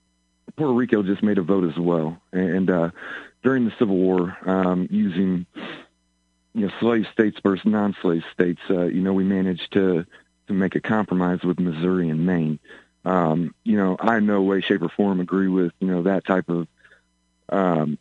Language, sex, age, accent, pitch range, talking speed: English, male, 40-59, American, 90-105 Hz, 185 wpm